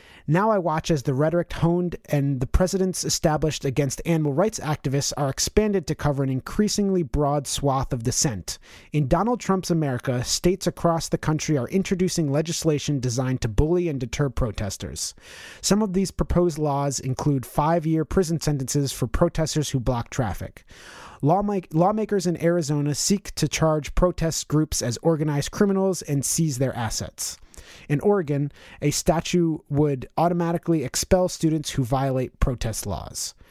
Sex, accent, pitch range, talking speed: male, American, 140-175 Hz, 150 wpm